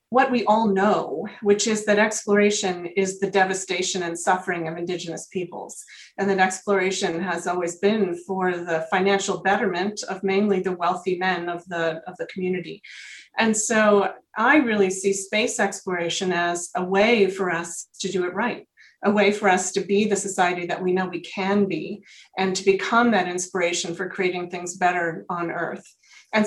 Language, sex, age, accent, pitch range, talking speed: English, female, 30-49, American, 185-215 Hz, 175 wpm